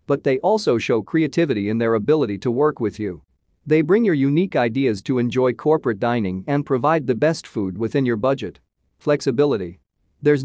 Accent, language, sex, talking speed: American, English, male, 180 wpm